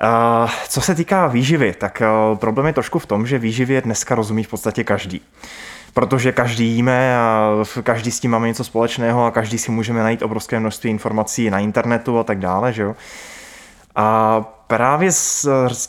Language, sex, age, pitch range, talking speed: Czech, male, 20-39, 115-130 Hz, 175 wpm